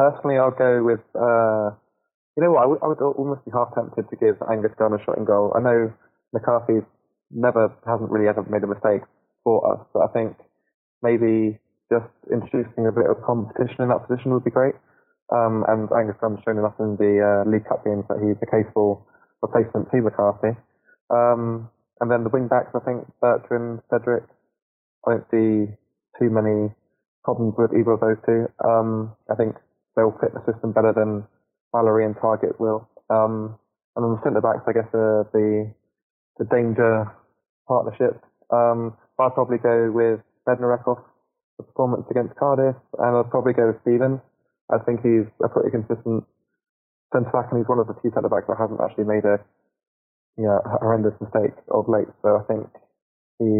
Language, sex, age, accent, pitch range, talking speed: English, male, 20-39, British, 110-120 Hz, 185 wpm